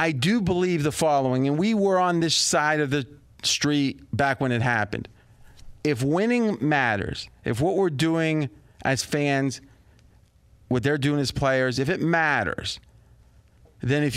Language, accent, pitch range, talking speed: English, American, 125-175 Hz, 155 wpm